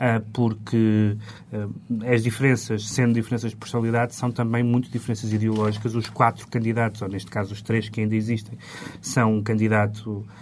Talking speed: 160 wpm